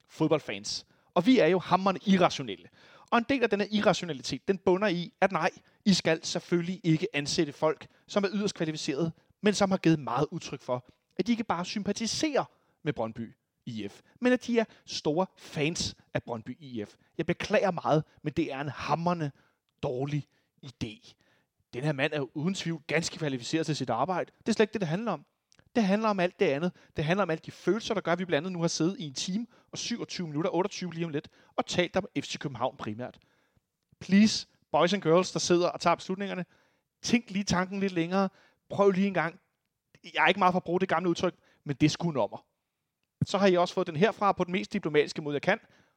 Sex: male